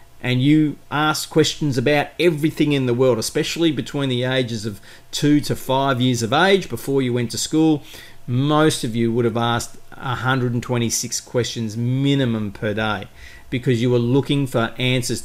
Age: 40-59